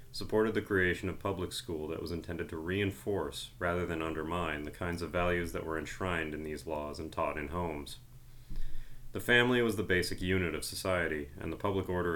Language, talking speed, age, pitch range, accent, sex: English, 195 wpm, 30-49, 80-105 Hz, American, male